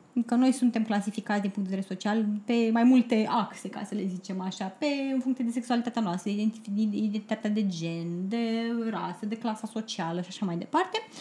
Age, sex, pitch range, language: 20-39, female, 215-275 Hz, Romanian